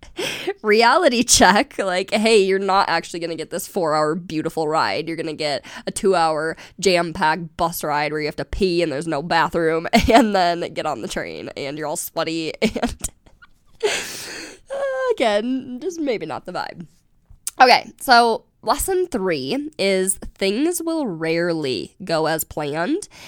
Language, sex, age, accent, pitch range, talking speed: English, female, 20-39, American, 165-210 Hz, 150 wpm